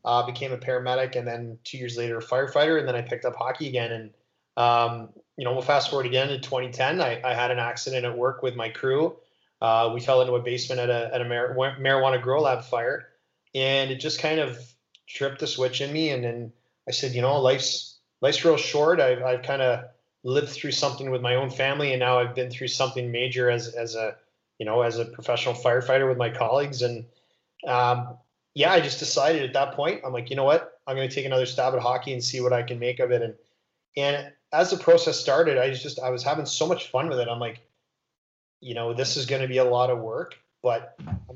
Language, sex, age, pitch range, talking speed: English, male, 20-39, 120-140 Hz, 240 wpm